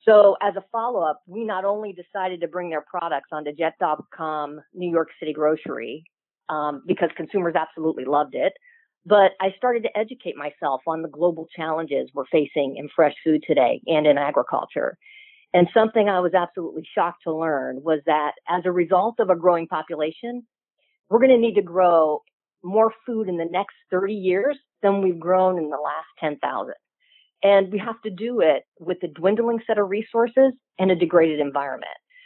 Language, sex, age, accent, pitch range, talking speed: English, female, 50-69, American, 160-215 Hz, 180 wpm